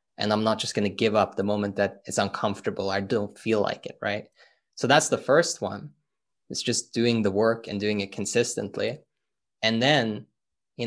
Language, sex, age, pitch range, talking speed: English, male, 20-39, 110-130 Hz, 200 wpm